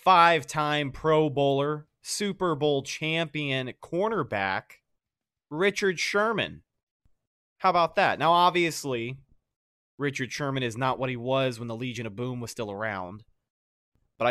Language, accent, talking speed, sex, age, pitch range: English, American, 125 wpm, male, 30-49, 115-150 Hz